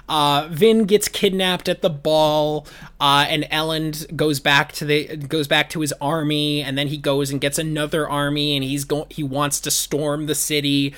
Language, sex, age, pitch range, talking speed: English, male, 20-39, 140-175 Hz, 195 wpm